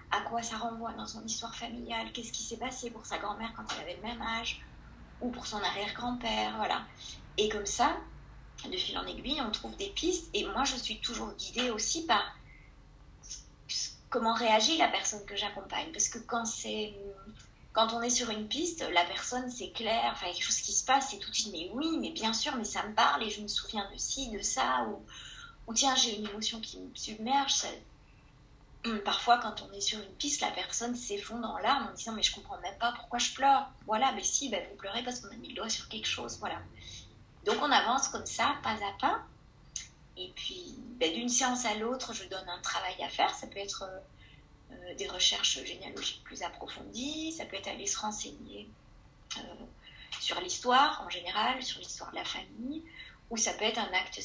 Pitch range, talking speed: 210-255 Hz, 210 wpm